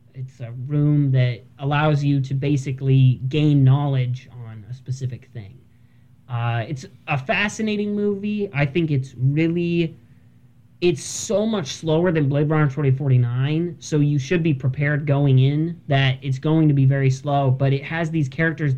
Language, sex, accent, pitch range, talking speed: English, male, American, 130-160 Hz, 160 wpm